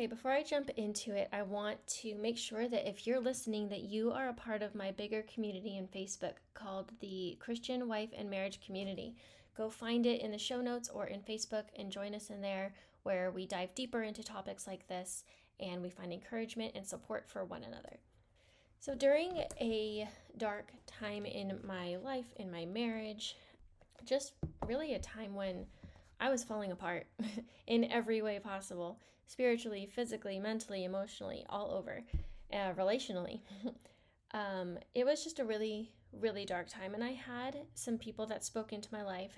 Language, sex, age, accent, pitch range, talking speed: English, female, 10-29, American, 195-235 Hz, 175 wpm